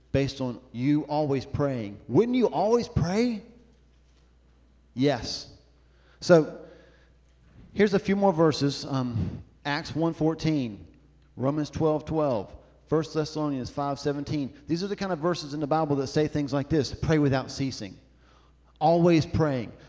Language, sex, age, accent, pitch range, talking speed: English, male, 40-59, American, 120-185 Hz, 130 wpm